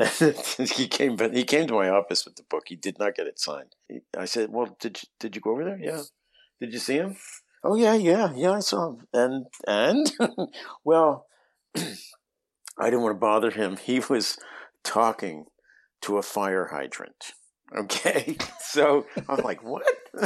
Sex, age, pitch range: male, 50-69, 95-135 Hz